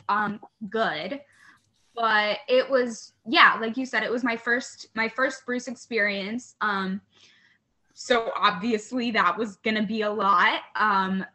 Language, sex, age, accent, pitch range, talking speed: English, female, 10-29, American, 215-260 Hz, 145 wpm